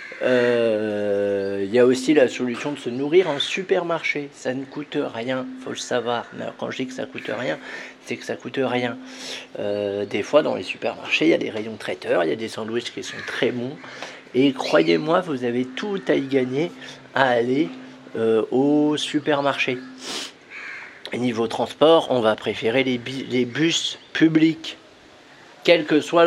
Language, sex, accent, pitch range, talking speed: French, male, French, 115-155 Hz, 185 wpm